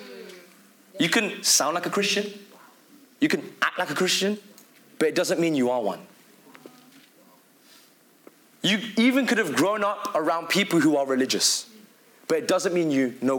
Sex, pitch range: male, 155-235 Hz